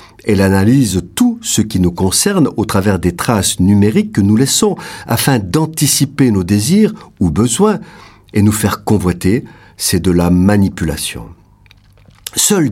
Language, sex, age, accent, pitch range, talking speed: French, male, 50-69, French, 95-130 Hz, 140 wpm